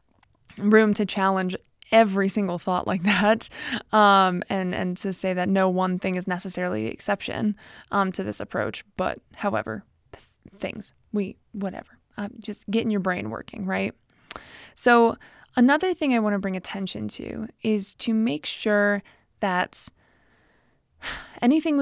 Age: 20-39